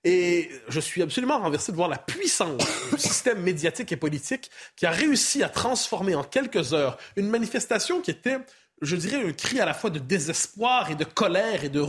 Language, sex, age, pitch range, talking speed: French, male, 30-49, 155-225 Hz, 200 wpm